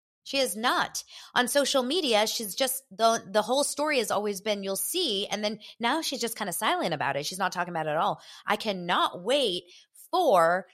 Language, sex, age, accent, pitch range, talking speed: English, female, 20-39, American, 170-245 Hz, 220 wpm